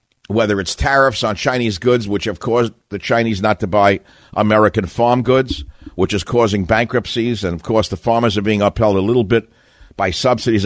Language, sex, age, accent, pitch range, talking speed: English, male, 50-69, American, 100-135 Hz, 190 wpm